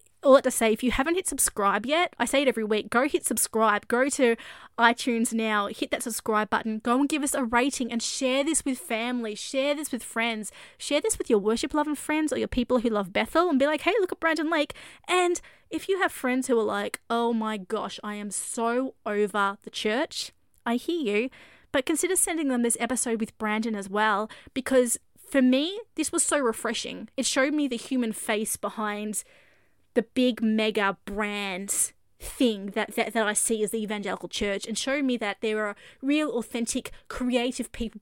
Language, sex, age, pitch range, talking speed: English, female, 20-39, 215-265 Hz, 205 wpm